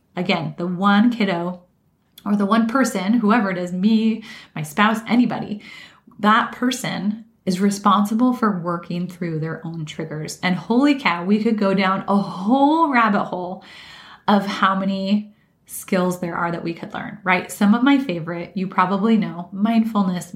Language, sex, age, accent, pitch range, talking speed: English, female, 20-39, American, 180-220 Hz, 160 wpm